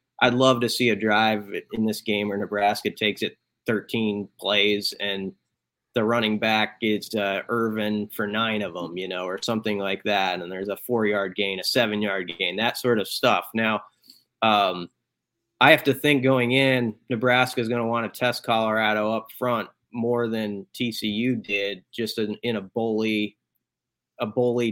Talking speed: 180 wpm